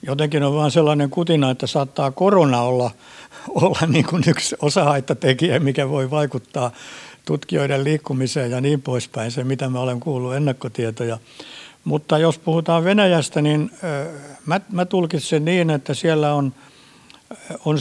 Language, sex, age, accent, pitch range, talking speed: Finnish, male, 60-79, native, 130-160 Hz, 135 wpm